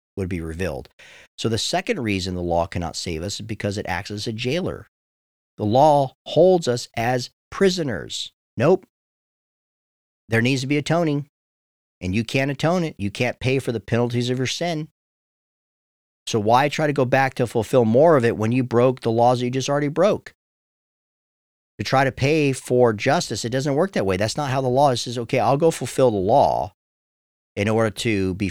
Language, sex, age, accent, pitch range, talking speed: English, male, 40-59, American, 95-130 Hz, 195 wpm